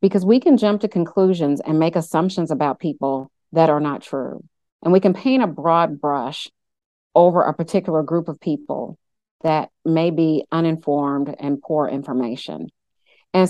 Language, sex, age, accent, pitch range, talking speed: English, female, 40-59, American, 150-190 Hz, 160 wpm